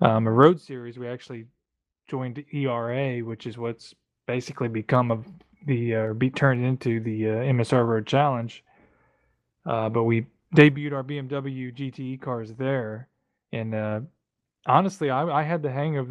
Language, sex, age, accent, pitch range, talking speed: English, male, 20-39, American, 115-135 Hz, 160 wpm